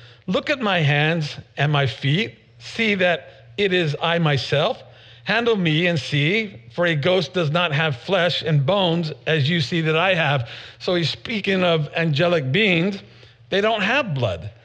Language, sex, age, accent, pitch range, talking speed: English, male, 50-69, American, 125-170 Hz, 170 wpm